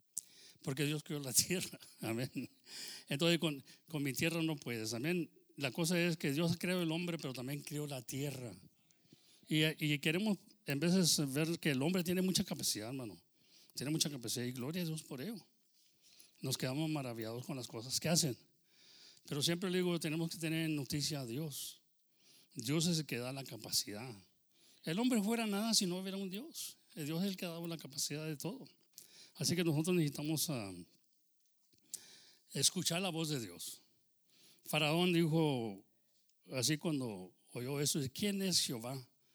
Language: English